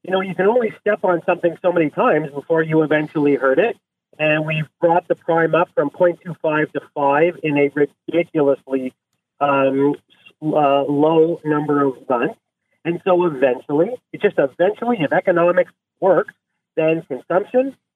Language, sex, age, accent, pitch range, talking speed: English, male, 40-59, American, 150-195 Hz, 155 wpm